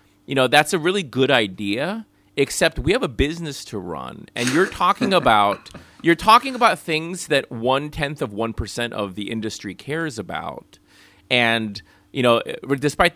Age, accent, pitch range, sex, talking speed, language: 30-49, American, 105-155 Hz, male, 170 wpm, English